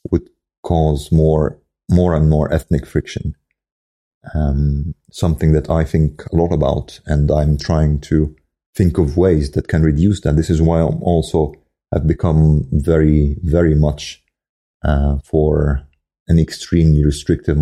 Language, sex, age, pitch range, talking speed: English, male, 40-59, 75-85 Hz, 145 wpm